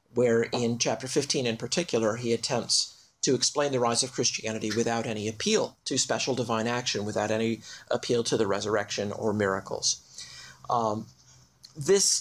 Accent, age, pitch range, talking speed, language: American, 40-59, 115-135 Hz, 150 wpm, English